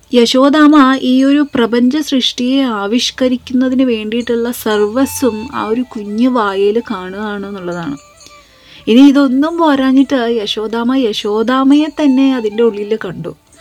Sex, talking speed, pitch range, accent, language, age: female, 95 wpm, 215-265 Hz, native, Malayalam, 30-49